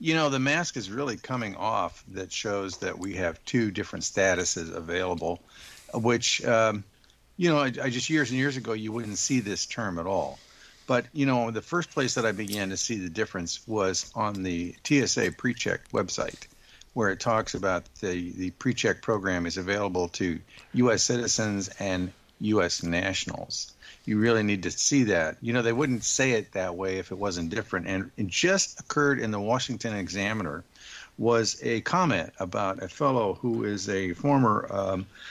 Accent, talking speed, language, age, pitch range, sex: American, 180 wpm, English, 50-69, 100-125 Hz, male